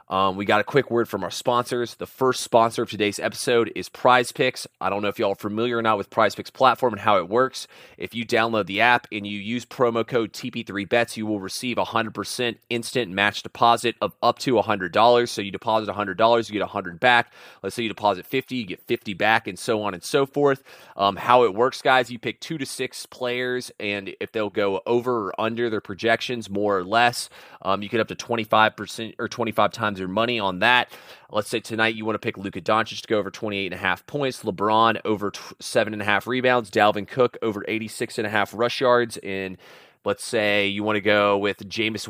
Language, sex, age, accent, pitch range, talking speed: English, male, 30-49, American, 105-120 Hz, 235 wpm